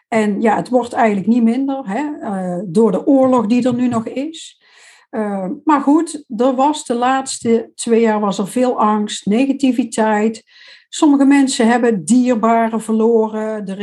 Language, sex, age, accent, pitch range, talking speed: Dutch, female, 60-79, Dutch, 225-290 Hz, 150 wpm